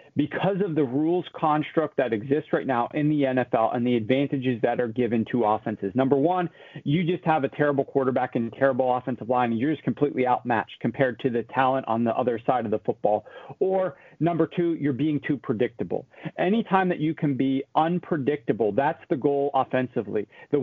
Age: 40-59